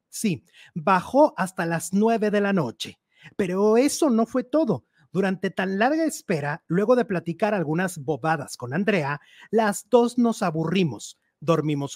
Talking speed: 145 wpm